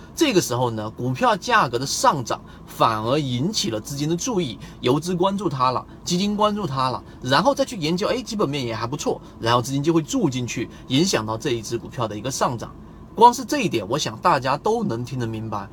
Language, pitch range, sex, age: Chinese, 115-175 Hz, male, 30-49